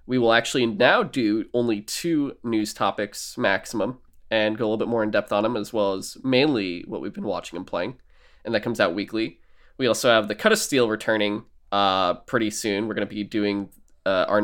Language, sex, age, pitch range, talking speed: English, male, 20-39, 105-125 Hz, 220 wpm